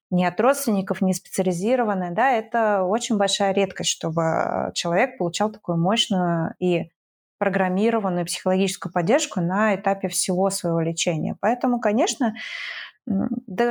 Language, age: Russian, 20-39